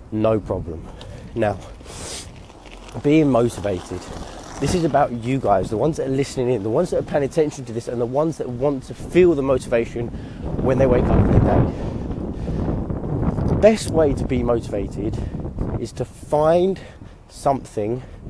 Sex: male